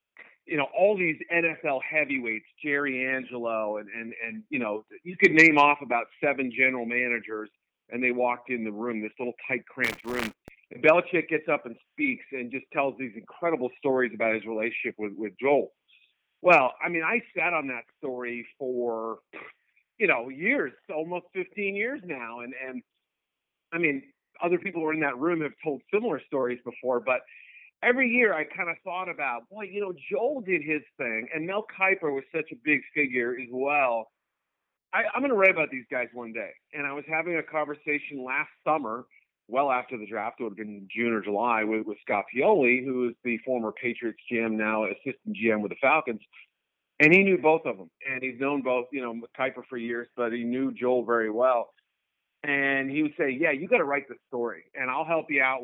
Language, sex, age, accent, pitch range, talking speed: English, male, 50-69, American, 120-155 Hz, 200 wpm